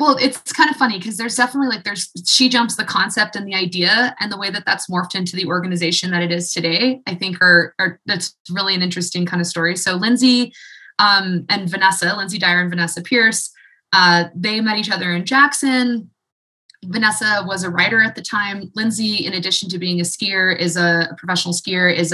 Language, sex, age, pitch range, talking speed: English, female, 20-39, 175-225 Hz, 210 wpm